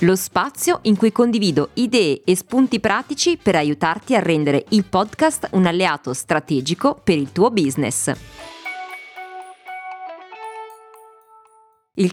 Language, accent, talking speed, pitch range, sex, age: Italian, native, 115 wpm, 145-205 Hz, female, 30-49